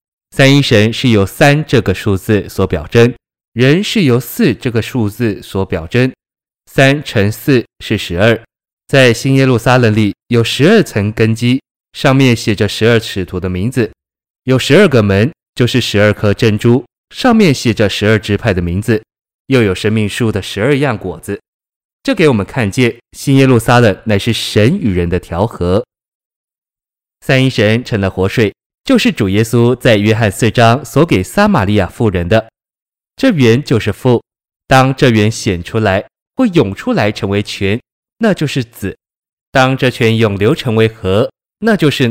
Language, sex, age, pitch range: Chinese, male, 20-39, 100-130 Hz